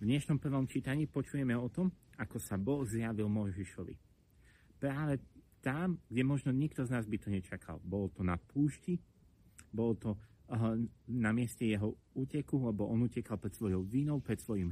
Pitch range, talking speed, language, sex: 100-130 Hz, 165 wpm, Slovak, male